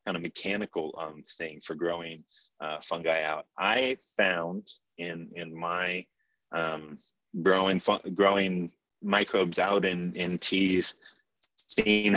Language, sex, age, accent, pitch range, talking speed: English, male, 30-49, American, 85-95 Hz, 125 wpm